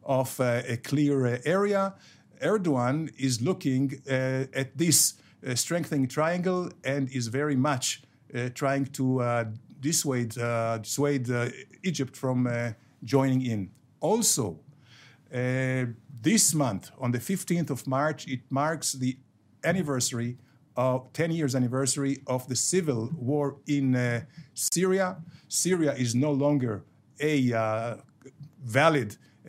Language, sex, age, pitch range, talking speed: English, male, 50-69, 125-155 Hz, 130 wpm